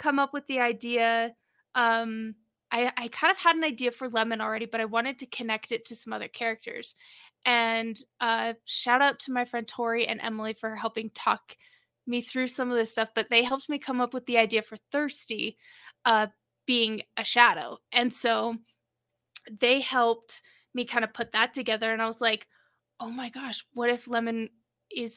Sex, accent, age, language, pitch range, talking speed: female, American, 20-39, English, 230-260 Hz, 195 wpm